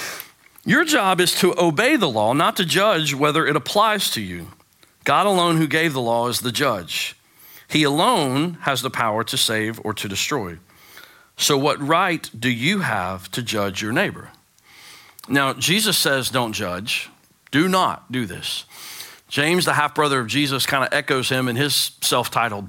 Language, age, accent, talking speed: English, 40-59, American, 175 wpm